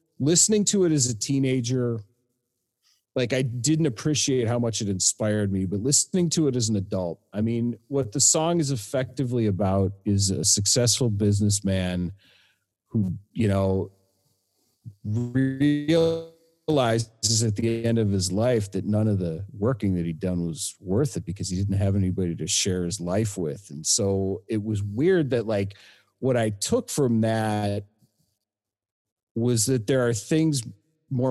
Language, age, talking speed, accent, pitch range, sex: English, 40-59, 160 wpm, American, 100-130 Hz, male